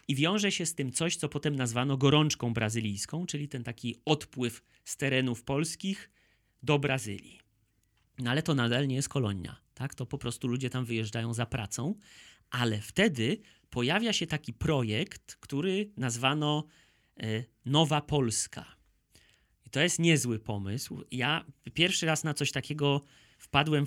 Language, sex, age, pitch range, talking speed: Polish, male, 30-49, 120-150 Hz, 150 wpm